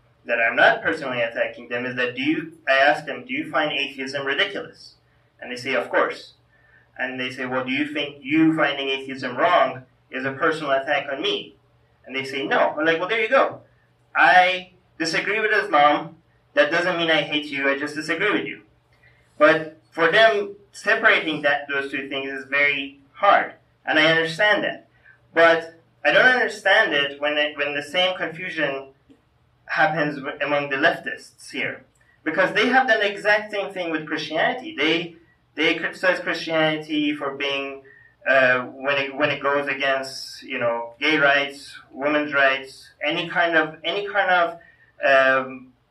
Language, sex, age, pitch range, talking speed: English, male, 30-49, 140-185 Hz, 175 wpm